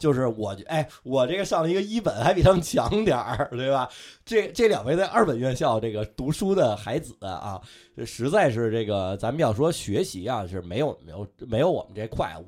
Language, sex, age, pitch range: Chinese, male, 20-39, 110-155 Hz